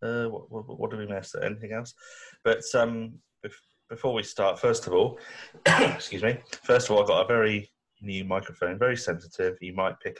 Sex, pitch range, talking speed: male, 100-130 Hz, 200 wpm